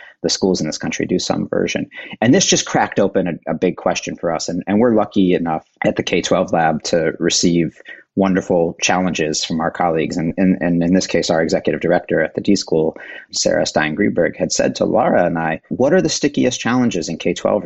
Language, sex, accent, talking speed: English, male, American, 220 wpm